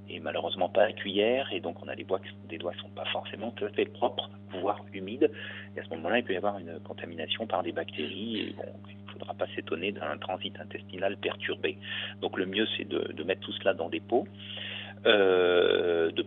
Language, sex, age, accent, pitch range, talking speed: French, male, 40-59, French, 100-105 Hz, 240 wpm